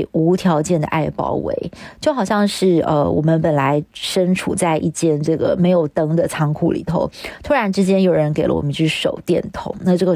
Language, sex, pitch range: Chinese, female, 165-205 Hz